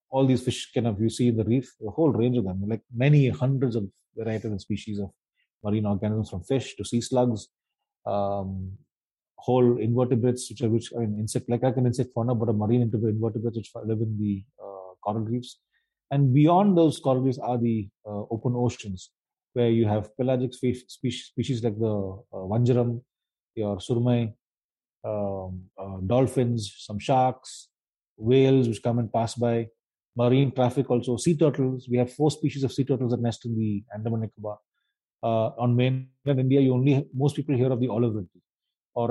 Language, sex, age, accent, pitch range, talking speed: Telugu, male, 30-49, native, 110-130 Hz, 180 wpm